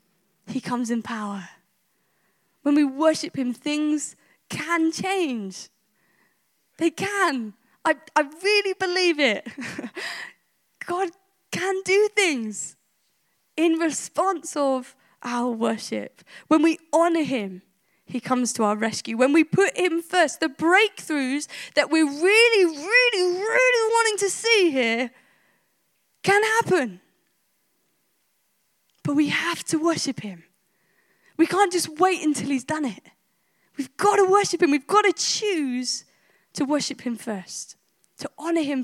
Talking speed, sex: 130 wpm, female